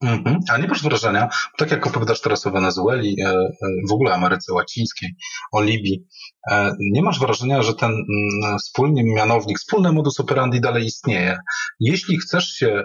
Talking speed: 160 wpm